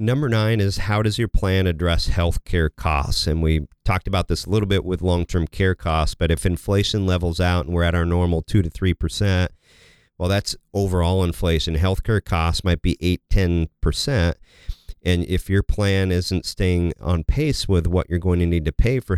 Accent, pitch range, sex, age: American, 80-95 Hz, male, 40-59